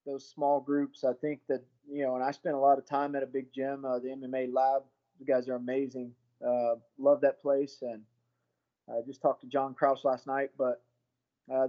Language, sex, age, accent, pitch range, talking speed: English, male, 20-39, American, 125-145 Hz, 215 wpm